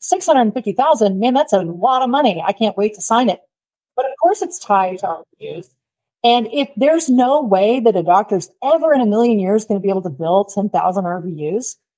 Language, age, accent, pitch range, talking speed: English, 30-49, American, 185-255 Hz, 205 wpm